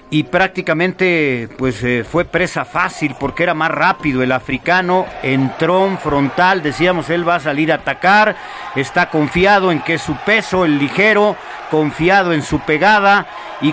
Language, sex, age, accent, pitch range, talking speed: Spanish, male, 50-69, Mexican, 140-180 Hz, 155 wpm